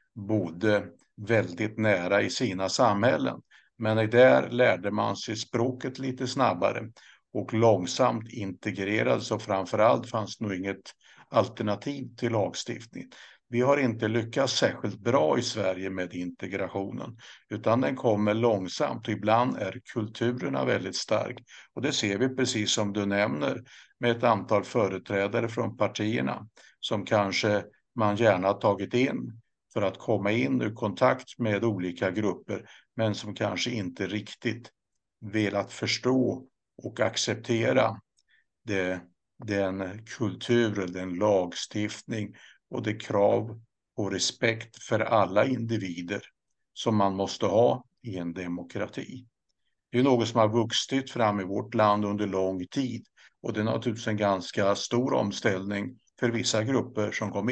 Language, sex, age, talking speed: Swedish, male, 60-79, 135 wpm